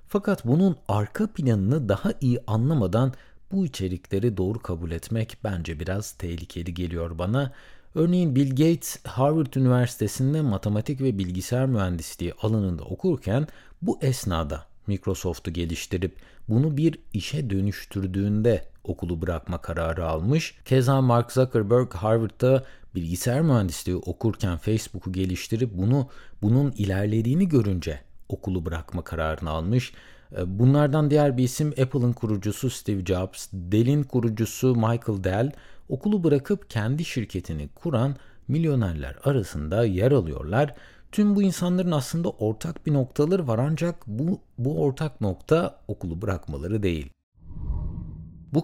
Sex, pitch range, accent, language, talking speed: male, 95-140 Hz, native, Turkish, 115 wpm